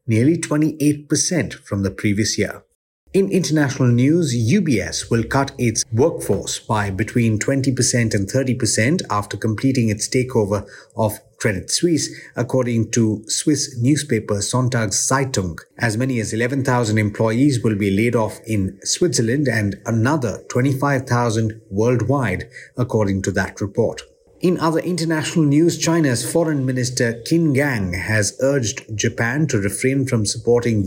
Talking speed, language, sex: 130 wpm, English, male